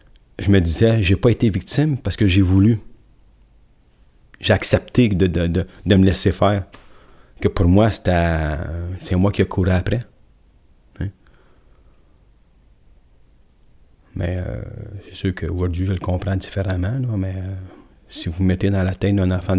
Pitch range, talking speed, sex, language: 90-100 Hz, 160 wpm, male, French